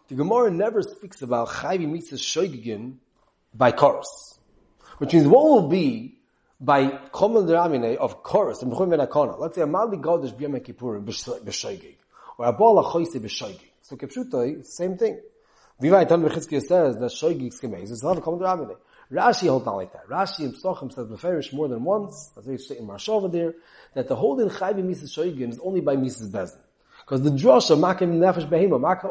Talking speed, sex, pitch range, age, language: 180 wpm, male, 135-195 Hz, 30-49, English